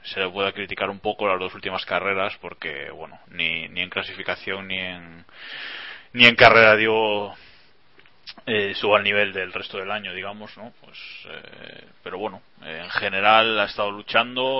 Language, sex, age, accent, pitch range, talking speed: Spanish, male, 20-39, Spanish, 90-105 Hz, 175 wpm